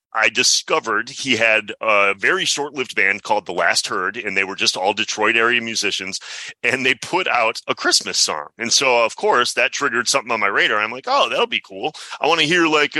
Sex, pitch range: male, 130-180 Hz